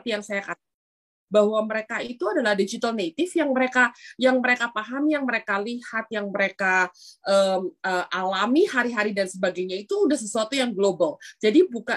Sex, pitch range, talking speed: female, 185-265 Hz, 165 wpm